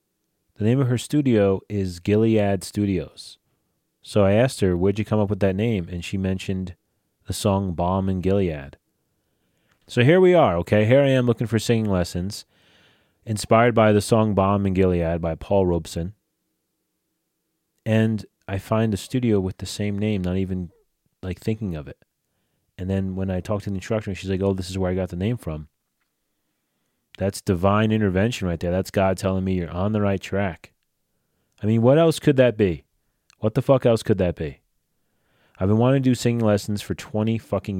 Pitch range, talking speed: 95-110 Hz, 190 wpm